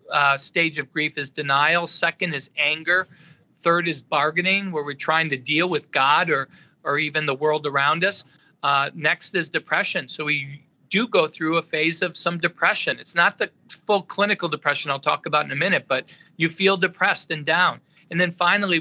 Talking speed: 195 wpm